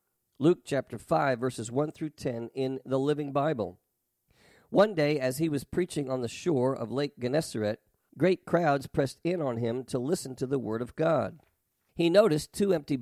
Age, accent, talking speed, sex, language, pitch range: 50-69, American, 185 wpm, male, English, 120-155 Hz